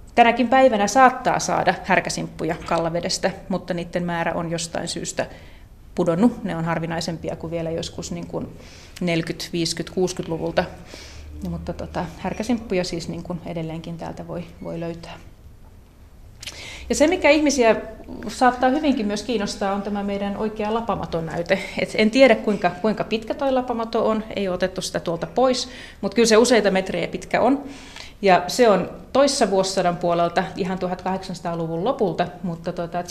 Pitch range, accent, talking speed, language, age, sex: 170-220 Hz, native, 135 wpm, Finnish, 30-49, female